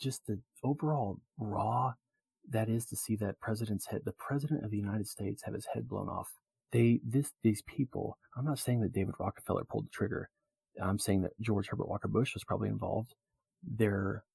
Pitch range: 100-130 Hz